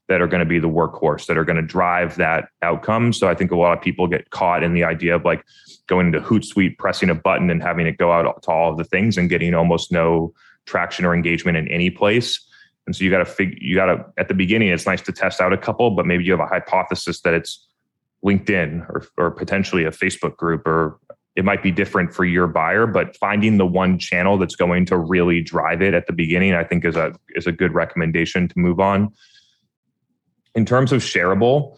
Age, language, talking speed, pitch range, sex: 20-39, English, 235 wpm, 85-95 Hz, male